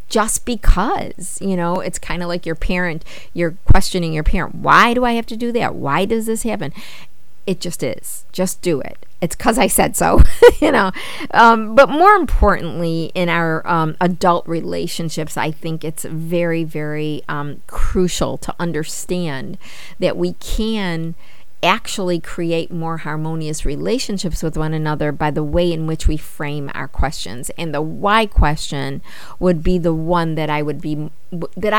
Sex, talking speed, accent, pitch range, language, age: female, 170 wpm, American, 155-195 Hz, English, 50-69